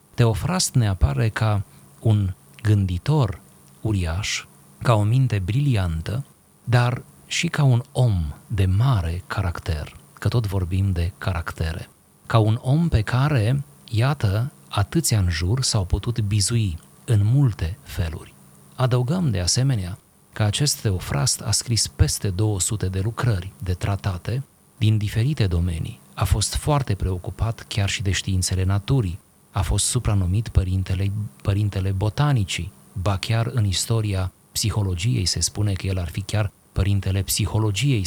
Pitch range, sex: 95-115 Hz, male